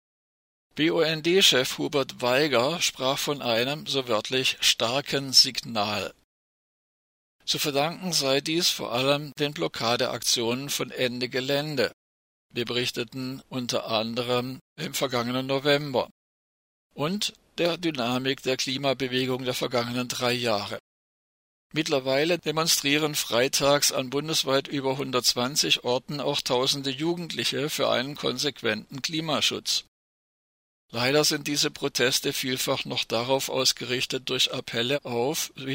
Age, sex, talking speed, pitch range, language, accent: 50-69, male, 105 wpm, 120-150 Hz, German, German